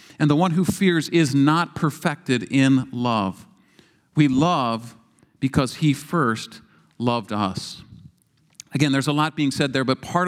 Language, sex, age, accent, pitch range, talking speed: English, male, 50-69, American, 135-165 Hz, 150 wpm